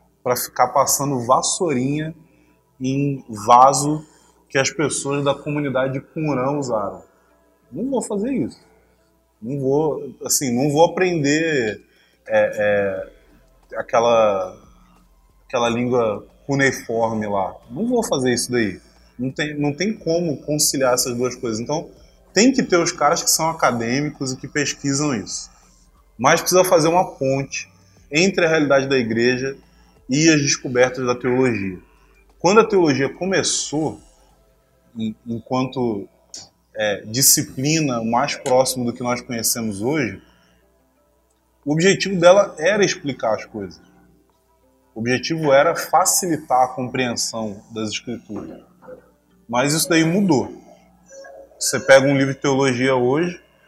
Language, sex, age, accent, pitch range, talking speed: Portuguese, male, 20-39, Brazilian, 115-150 Hz, 120 wpm